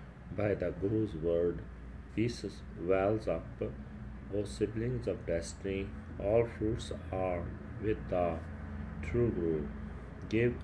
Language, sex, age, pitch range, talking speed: Punjabi, male, 40-59, 75-105 Hz, 105 wpm